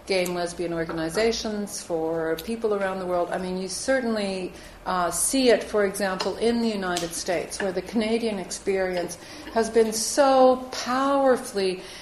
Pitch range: 180-220 Hz